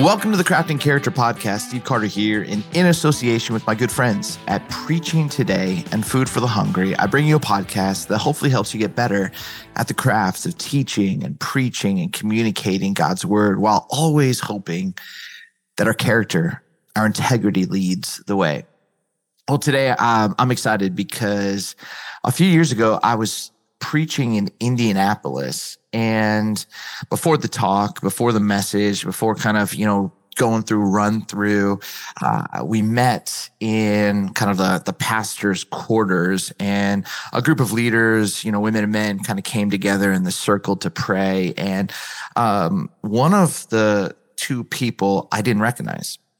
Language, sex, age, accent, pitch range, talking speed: English, male, 30-49, American, 100-135 Hz, 165 wpm